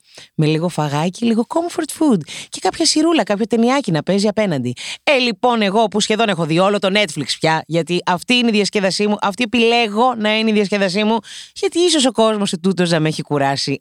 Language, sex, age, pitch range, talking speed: Greek, female, 30-49, 170-235 Hz, 210 wpm